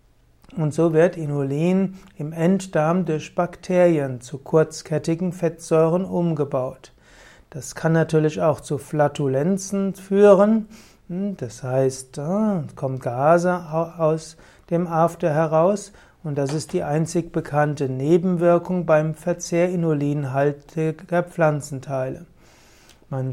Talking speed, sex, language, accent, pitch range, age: 105 wpm, male, German, German, 145-175 Hz, 60-79